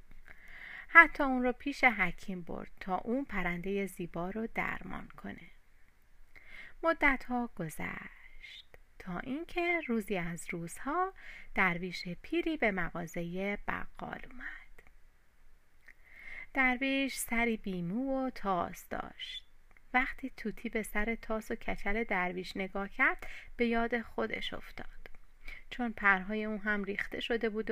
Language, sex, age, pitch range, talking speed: Persian, female, 30-49, 190-245 Hz, 115 wpm